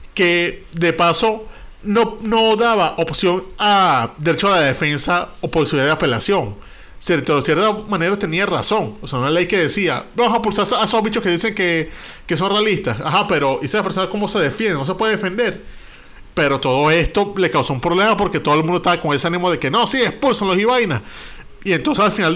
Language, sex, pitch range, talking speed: Spanish, male, 150-215 Hz, 210 wpm